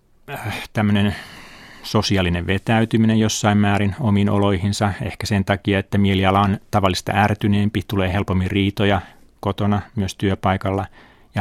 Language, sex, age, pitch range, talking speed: Finnish, male, 30-49, 95-105 Hz, 115 wpm